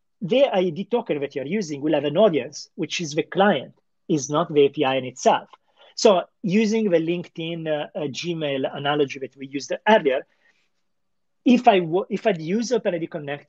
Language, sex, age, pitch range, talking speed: English, male, 40-59, 150-200 Hz, 180 wpm